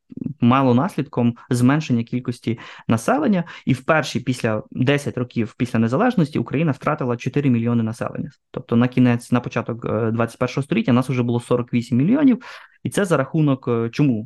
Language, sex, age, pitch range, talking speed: Ukrainian, male, 20-39, 115-140 Hz, 145 wpm